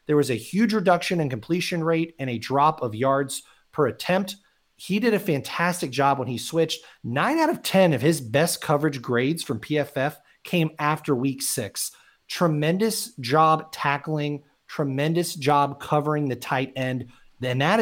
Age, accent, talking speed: 30-49, American, 165 wpm